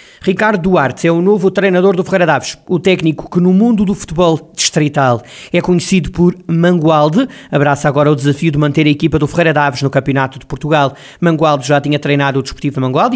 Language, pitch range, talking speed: Portuguese, 150-180 Hz, 200 wpm